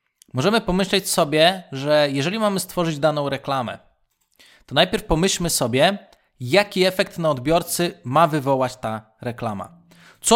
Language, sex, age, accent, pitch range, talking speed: Polish, male, 20-39, native, 130-180 Hz, 125 wpm